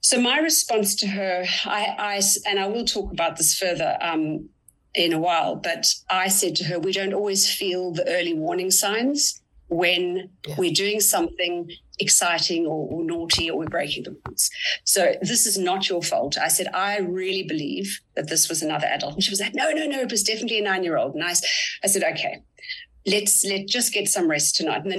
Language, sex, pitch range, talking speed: English, female, 170-215 Hz, 205 wpm